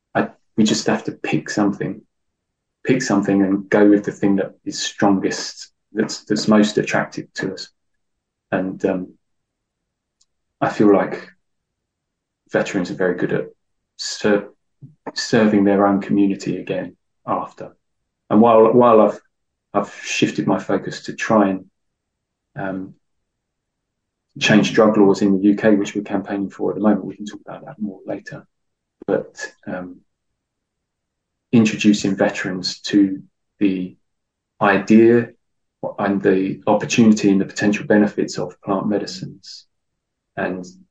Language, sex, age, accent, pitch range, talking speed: English, male, 20-39, British, 95-110 Hz, 130 wpm